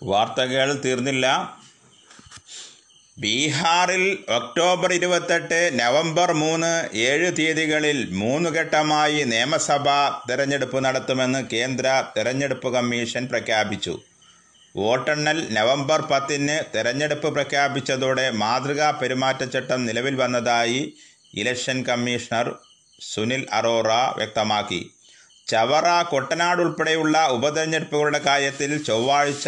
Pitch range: 125-150 Hz